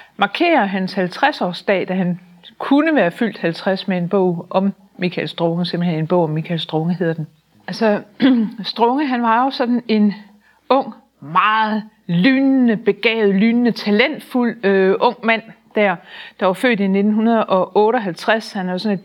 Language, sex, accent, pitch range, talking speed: Danish, female, native, 185-230 Hz, 155 wpm